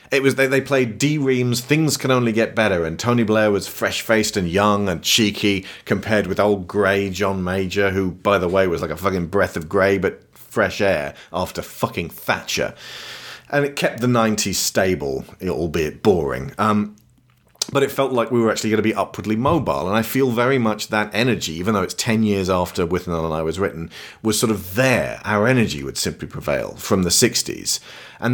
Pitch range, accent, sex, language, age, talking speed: 100-125 Hz, British, male, English, 40-59, 200 wpm